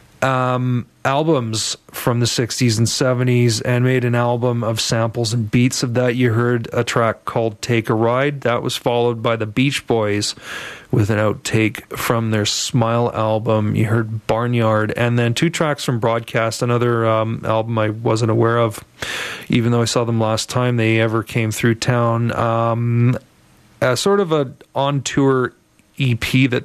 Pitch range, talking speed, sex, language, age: 115-130 Hz, 175 wpm, male, English, 40-59